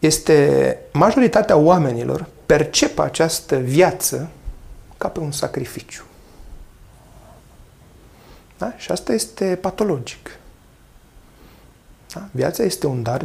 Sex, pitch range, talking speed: male, 125-160 Hz, 80 wpm